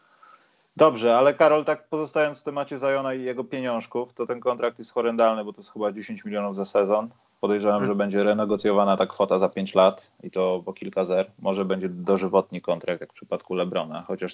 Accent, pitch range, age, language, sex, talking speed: native, 100-130 Hz, 30-49, Polish, male, 195 wpm